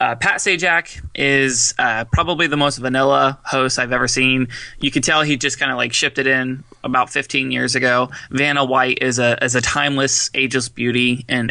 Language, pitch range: English, 130-145 Hz